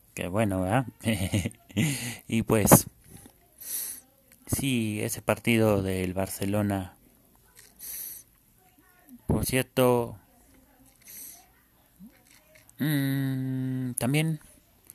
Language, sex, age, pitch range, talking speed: Spanish, male, 30-49, 100-120 Hz, 55 wpm